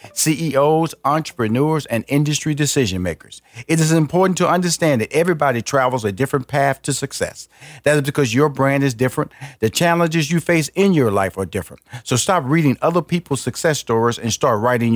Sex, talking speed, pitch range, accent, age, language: male, 180 wpm, 115-155 Hz, American, 50-69, English